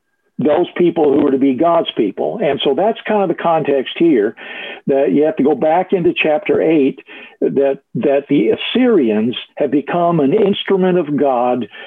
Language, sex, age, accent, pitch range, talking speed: English, male, 50-69, American, 135-160 Hz, 175 wpm